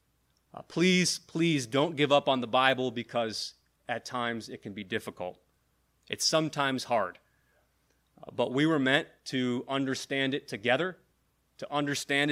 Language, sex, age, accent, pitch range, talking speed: English, male, 30-49, American, 120-145 Hz, 135 wpm